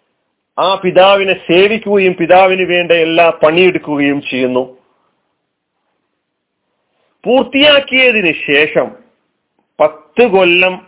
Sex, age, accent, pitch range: male, 40-59, native, 140-200 Hz